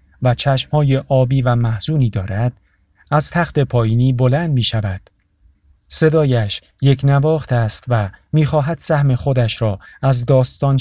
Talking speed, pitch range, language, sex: 130 wpm, 95-135 Hz, Persian, male